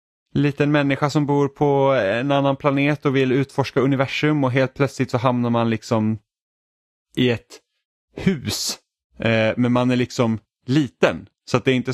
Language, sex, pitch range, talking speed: Swedish, male, 100-130 Hz, 160 wpm